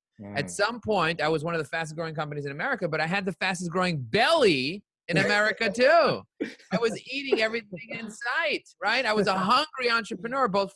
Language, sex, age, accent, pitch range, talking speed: English, male, 30-49, American, 155-210 Hz, 190 wpm